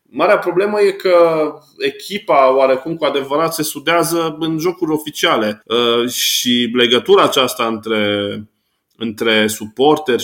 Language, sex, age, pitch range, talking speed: Romanian, male, 20-39, 110-145 Hz, 115 wpm